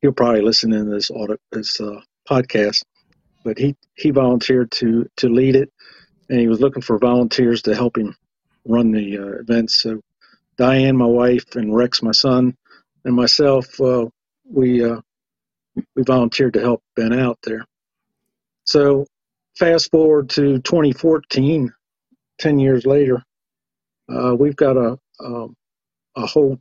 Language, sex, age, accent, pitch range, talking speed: English, male, 50-69, American, 115-135 Hz, 145 wpm